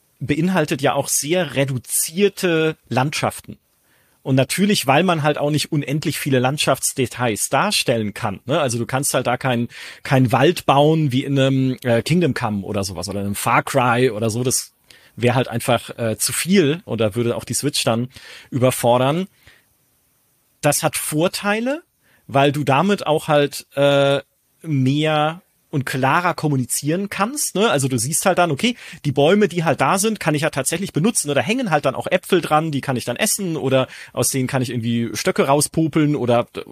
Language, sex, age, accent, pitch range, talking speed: German, male, 40-59, German, 125-165 Hz, 180 wpm